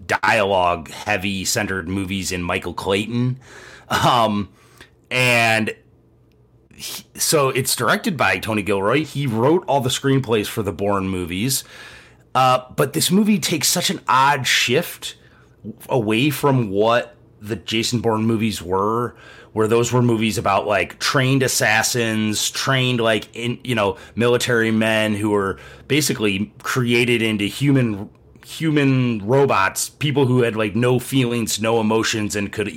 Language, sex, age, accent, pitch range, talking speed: English, male, 30-49, American, 110-140 Hz, 135 wpm